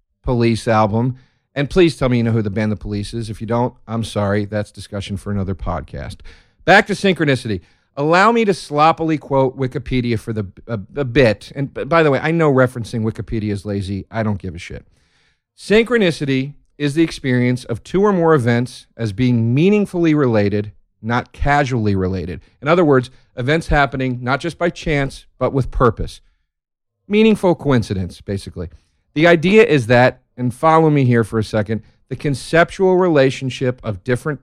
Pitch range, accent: 105-140 Hz, American